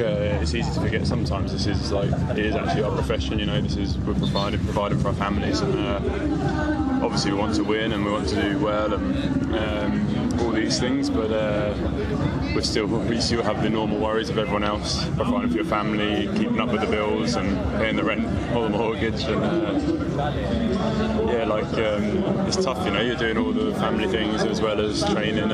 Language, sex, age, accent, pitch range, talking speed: English, male, 20-39, British, 95-110 Hz, 215 wpm